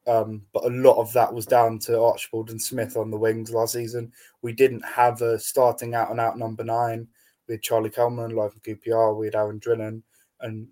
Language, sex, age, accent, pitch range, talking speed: English, male, 20-39, British, 110-120 Hz, 205 wpm